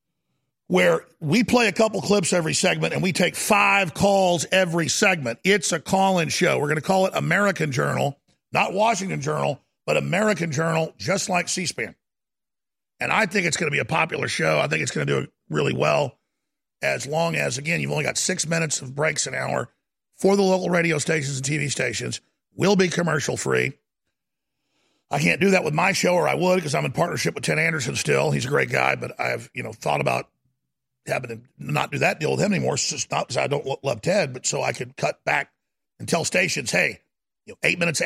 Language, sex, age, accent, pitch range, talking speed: English, male, 50-69, American, 140-185 Hz, 215 wpm